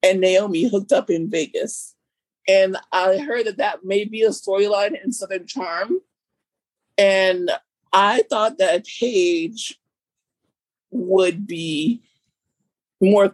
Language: English